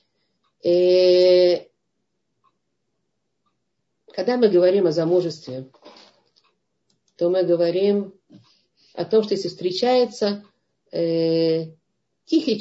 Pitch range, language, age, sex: 155-195 Hz, Russian, 50-69, female